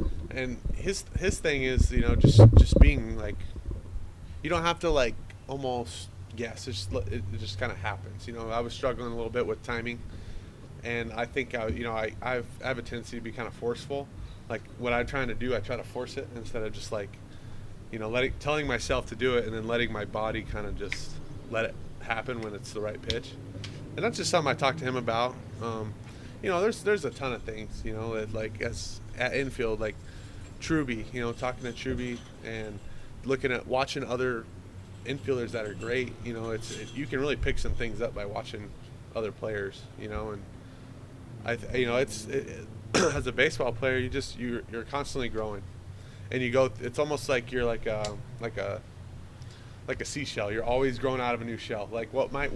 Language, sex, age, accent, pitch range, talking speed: English, male, 20-39, American, 105-125 Hz, 215 wpm